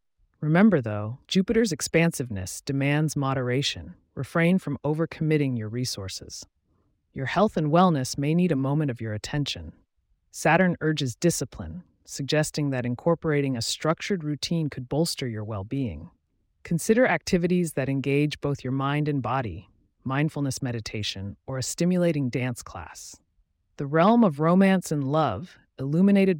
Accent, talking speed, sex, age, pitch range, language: American, 130 wpm, female, 30-49, 120-160 Hz, English